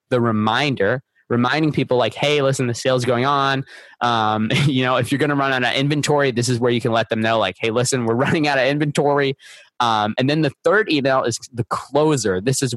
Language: English